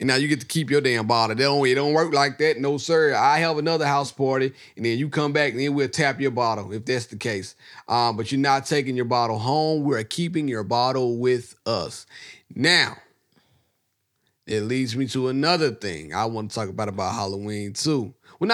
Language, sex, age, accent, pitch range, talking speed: English, male, 30-49, American, 125-180 Hz, 215 wpm